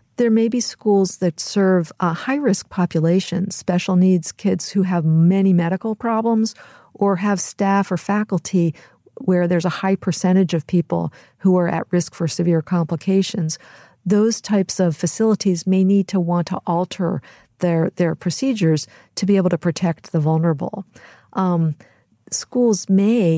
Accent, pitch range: American, 165-195 Hz